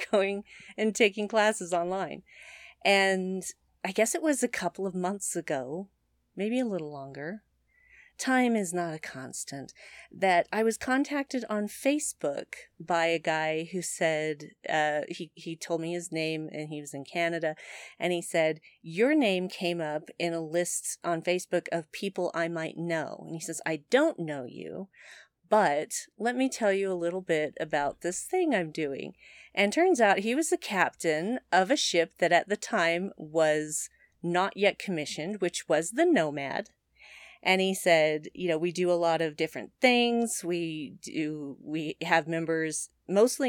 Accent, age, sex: American, 40-59, female